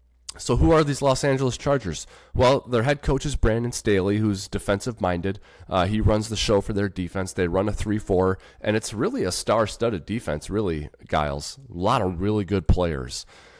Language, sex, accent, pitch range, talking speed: English, male, American, 90-110 Hz, 180 wpm